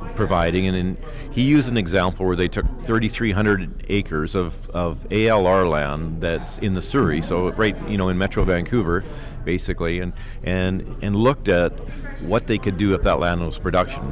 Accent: American